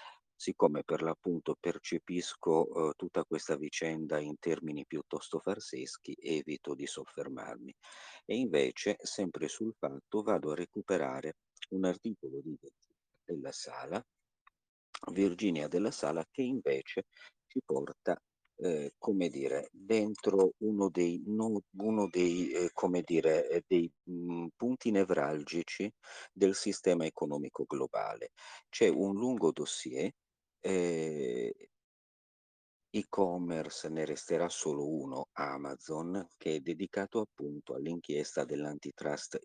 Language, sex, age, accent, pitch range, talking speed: Italian, male, 50-69, native, 80-110 Hz, 105 wpm